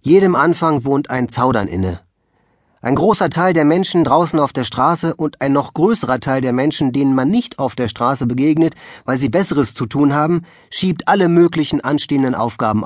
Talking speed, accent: 185 wpm, German